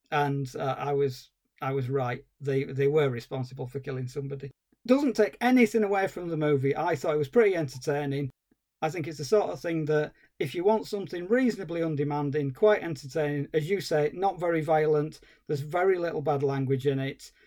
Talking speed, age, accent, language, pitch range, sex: 190 wpm, 40-59, British, English, 140-175 Hz, male